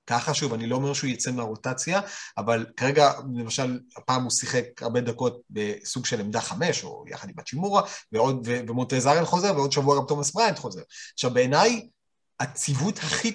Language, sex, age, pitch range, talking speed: Hebrew, male, 30-49, 120-150 Hz, 170 wpm